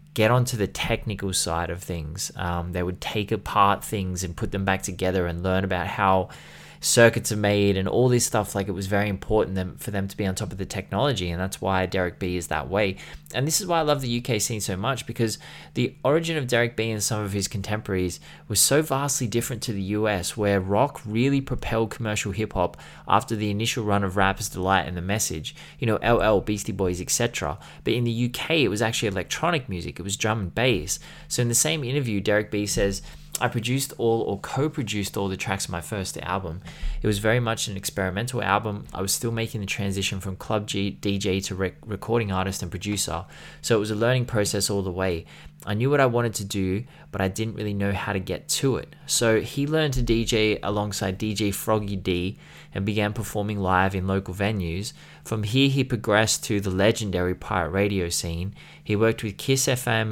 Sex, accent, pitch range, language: male, Australian, 95-115 Hz, English